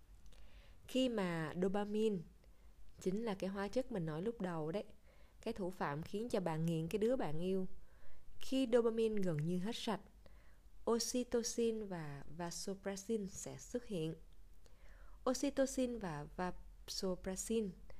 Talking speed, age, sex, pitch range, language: 130 wpm, 20-39, female, 160-210 Hz, Vietnamese